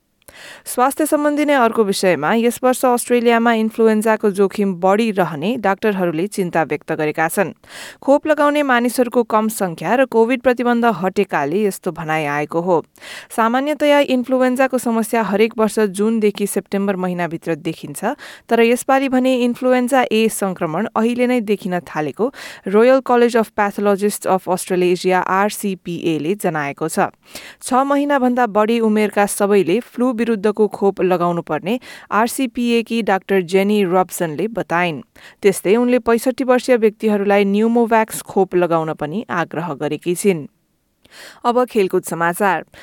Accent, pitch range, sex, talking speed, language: Indian, 185-240 Hz, female, 120 wpm, English